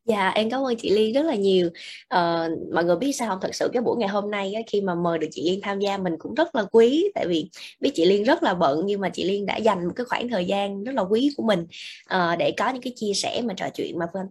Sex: female